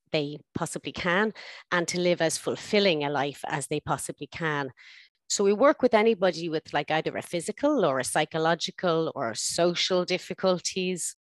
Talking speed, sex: 160 wpm, female